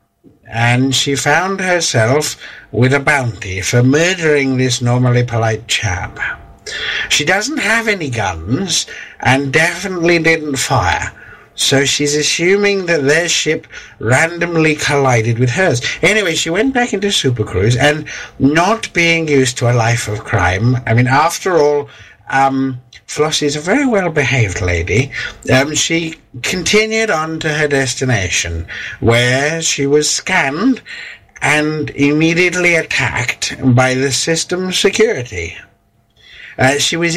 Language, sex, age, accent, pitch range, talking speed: English, male, 60-79, British, 125-165 Hz, 130 wpm